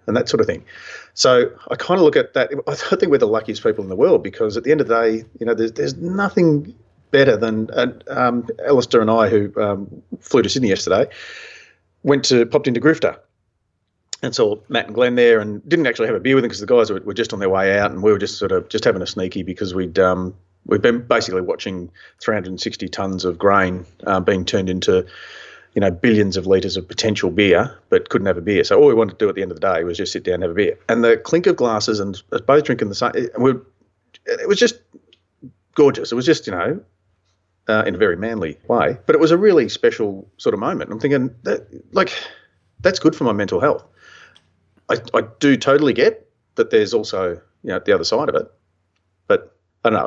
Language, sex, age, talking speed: English, male, 30-49, 235 wpm